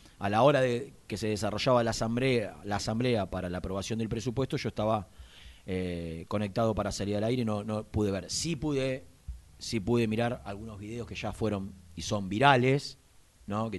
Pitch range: 95-125 Hz